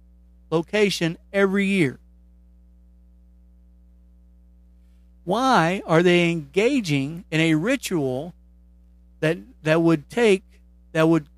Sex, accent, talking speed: male, American, 85 wpm